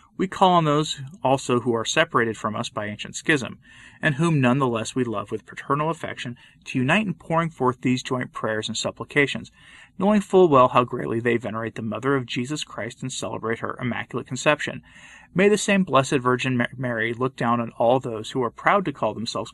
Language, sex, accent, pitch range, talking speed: English, male, American, 120-150 Hz, 205 wpm